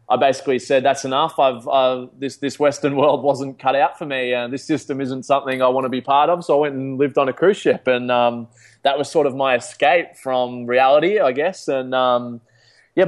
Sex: male